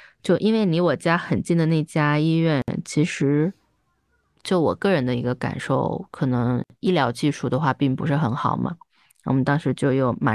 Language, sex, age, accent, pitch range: Chinese, female, 20-39, native, 130-165 Hz